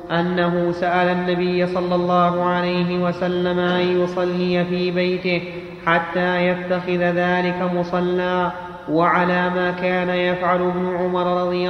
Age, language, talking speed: 30-49, Arabic, 115 wpm